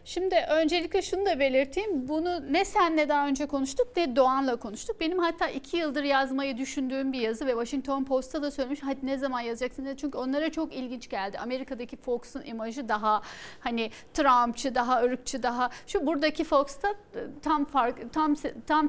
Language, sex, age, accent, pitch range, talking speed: Turkish, female, 40-59, native, 255-320 Hz, 170 wpm